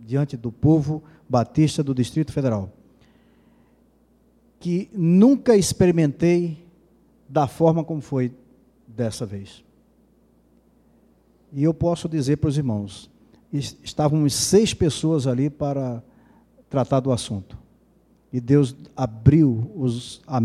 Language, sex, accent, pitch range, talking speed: Portuguese, male, Brazilian, 125-160 Hz, 105 wpm